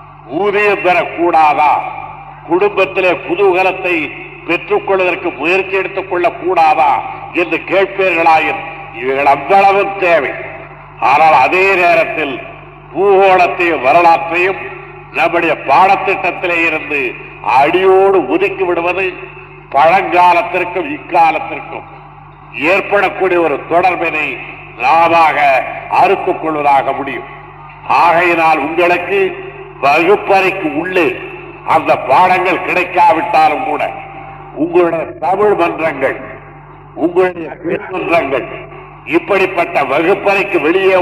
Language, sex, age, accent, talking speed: Tamil, male, 50-69, native, 65 wpm